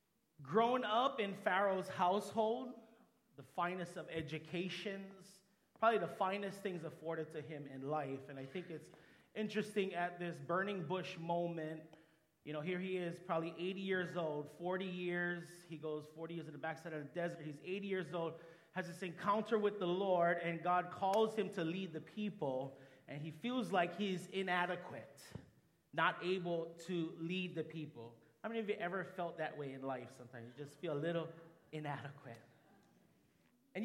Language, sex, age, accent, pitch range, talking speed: English, male, 30-49, American, 165-215 Hz, 170 wpm